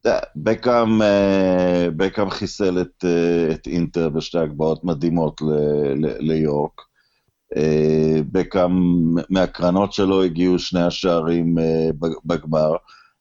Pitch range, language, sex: 85-125 Hz, Hebrew, male